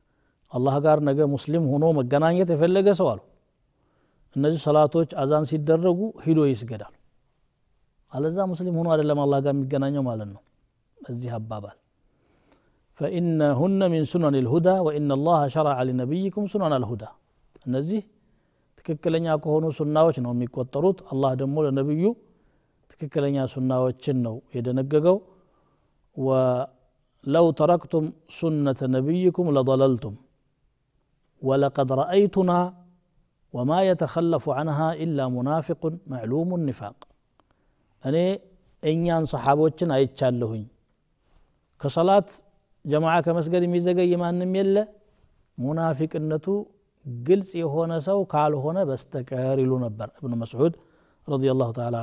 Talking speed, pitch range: 60 wpm, 125-165 Hz